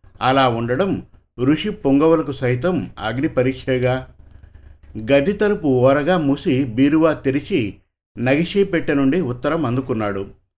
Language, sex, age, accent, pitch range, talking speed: Telugu, male, 50-69, native, 105-155 Hz, 85 wpm